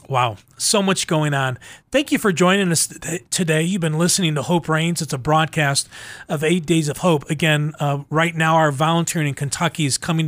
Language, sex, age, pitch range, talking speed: English, male, 40-59, 140-165 Hz, 210 wpm